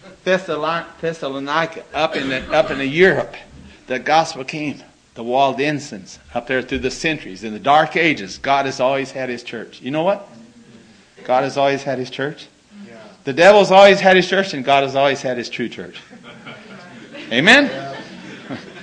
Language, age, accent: English, 50-69, American